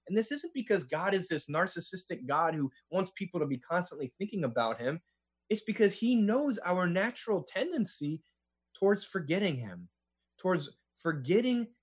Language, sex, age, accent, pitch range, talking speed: English, male, 20-39, American, 135-200 Hz, 150 wpm